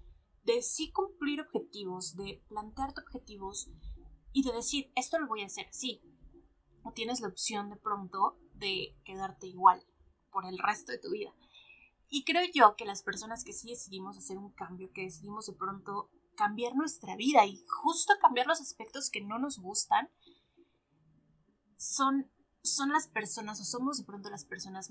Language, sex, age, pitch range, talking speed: Spanish, female, 20-39, 200-285 Hz, 170 wpm